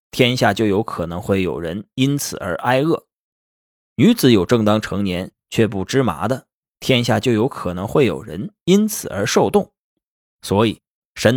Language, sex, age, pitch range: Chinese, male, 20-39, 100-135 Hz